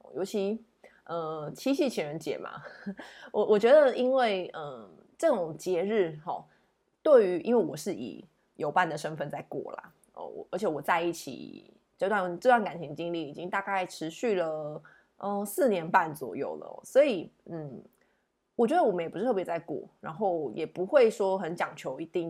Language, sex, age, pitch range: Chinese, female, 20-39, 160-220 Hz